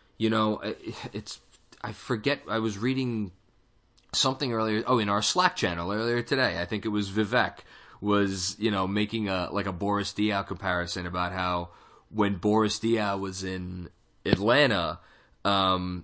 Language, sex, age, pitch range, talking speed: English, male, 20-39, 90-110 Hz, 155 wpm